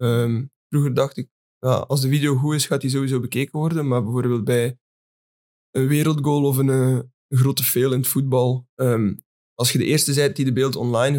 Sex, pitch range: male, 120-135 Hz